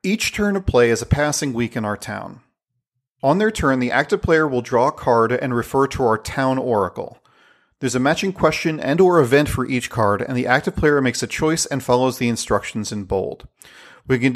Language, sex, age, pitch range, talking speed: English, male, 40-59, 120-150 Hz, 215 wpm